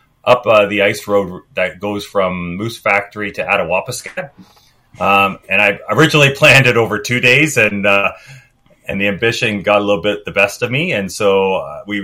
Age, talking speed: 30-49, 185 wpm